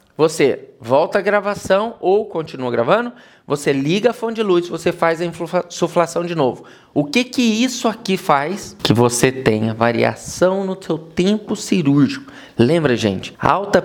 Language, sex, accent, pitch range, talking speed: Portuguese, male, Brazilian, 135-195 Hz, 155 wpm